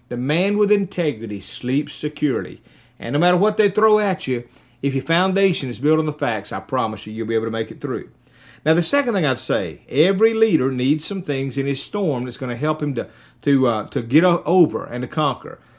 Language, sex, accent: English, male, American